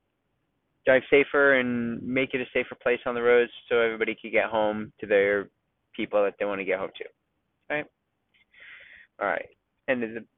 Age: 20-39